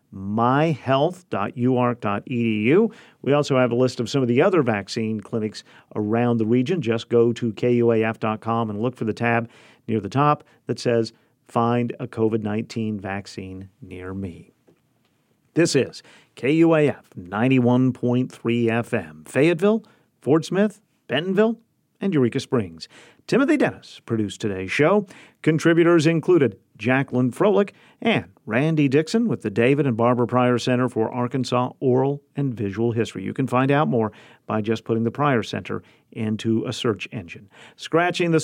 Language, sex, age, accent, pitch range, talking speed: English, male, 50-69, American, 110-145 Hz, 140 wpm